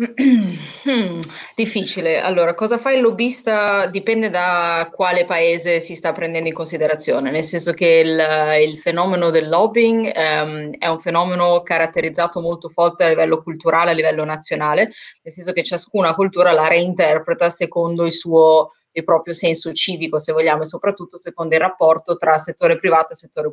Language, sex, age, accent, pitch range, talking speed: Italian, female, 30-49, native, 160-185 Hz, 160 wpm